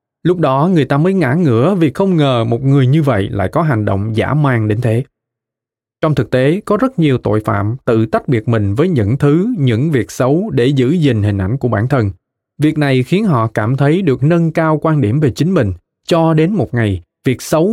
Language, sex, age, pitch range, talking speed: Vietnamese, male, 20-39, 115-155 Hz, 230 wpm